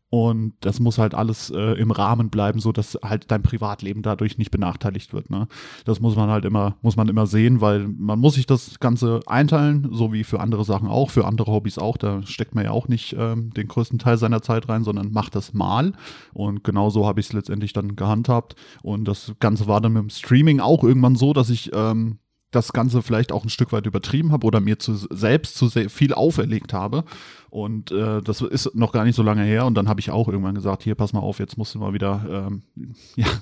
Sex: male